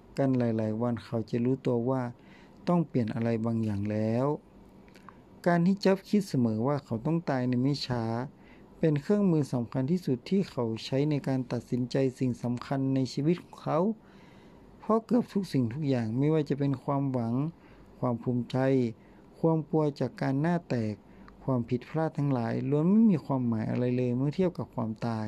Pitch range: 120-155 Hz